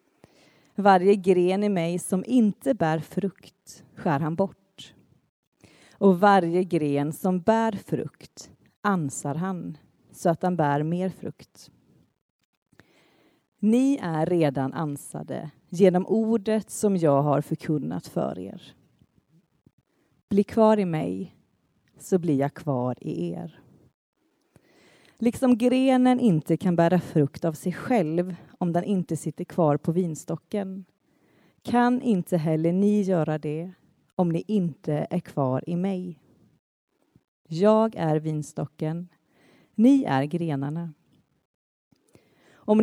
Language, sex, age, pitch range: Swedish, female, 30-49, 155-205 Hz